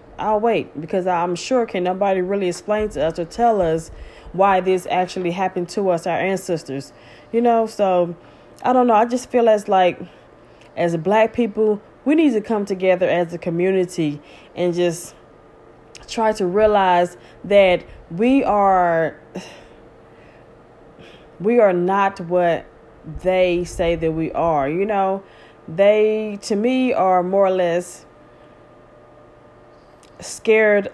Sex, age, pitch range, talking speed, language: female, 20-39, 170-210 Hz, 140 wpm, English